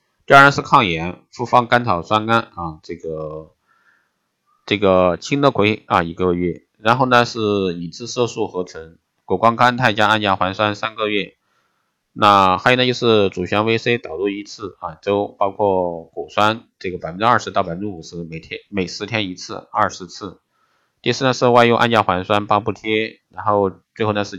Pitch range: 90-115 Hz